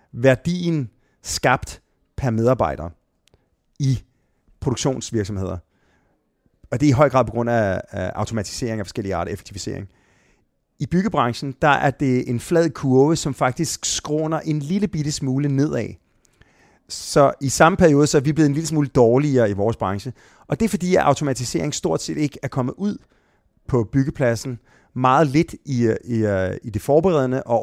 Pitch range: 115-145 Hz